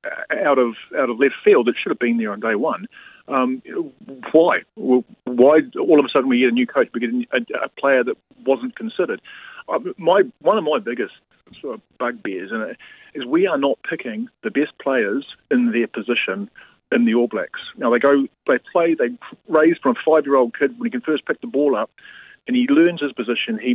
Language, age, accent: English, 40-59, British